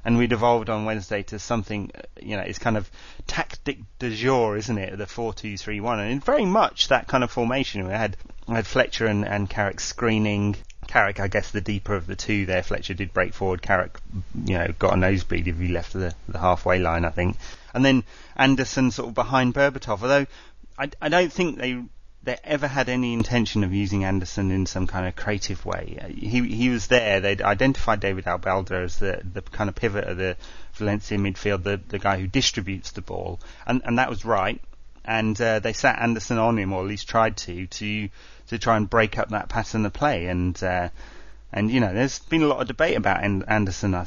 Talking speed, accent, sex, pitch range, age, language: 215 wpm, British, male, 95-115 Hz, 30-49, English